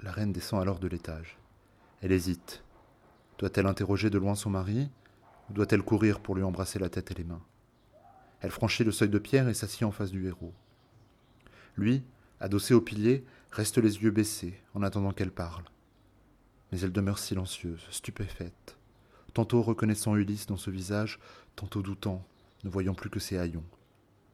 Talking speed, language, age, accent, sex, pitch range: 170 wpm, French, 30-49, French, male, 90-110 Hz